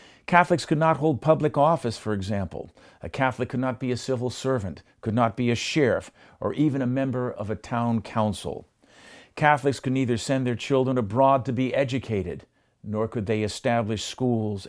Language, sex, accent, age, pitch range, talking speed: English, male, American, 50-69, 110-140 Hz, 180 wpm